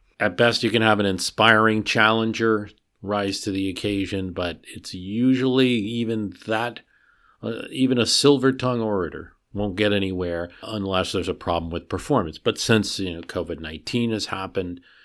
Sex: male